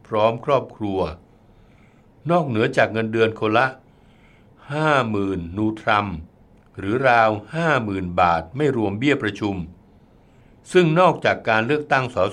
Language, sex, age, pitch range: Thai, male, 60-79, 100-130 Hz